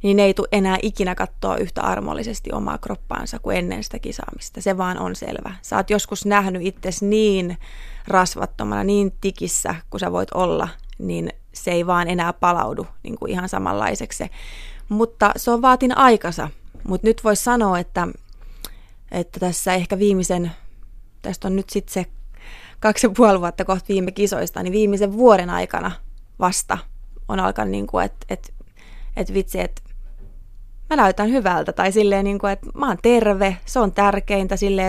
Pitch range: 180-205 Hz